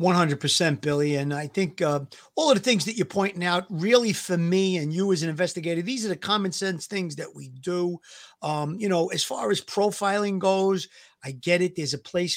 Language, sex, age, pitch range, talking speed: English, male, 40-59, 160-185 Hz, 215 wpm